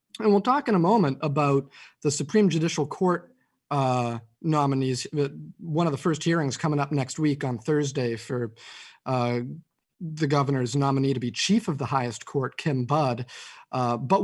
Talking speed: 170 wpm